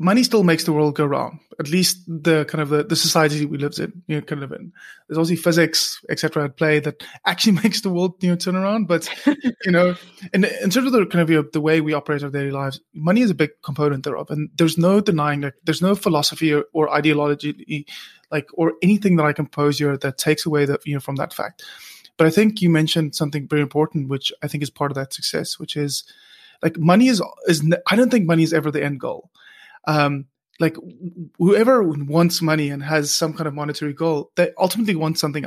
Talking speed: 240 wpm